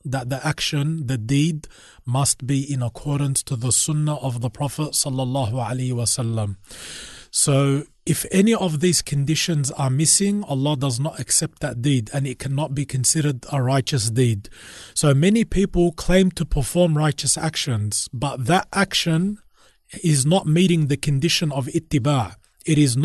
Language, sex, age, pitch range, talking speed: English, male, 30-49, 135-170 Hz, 155 wpm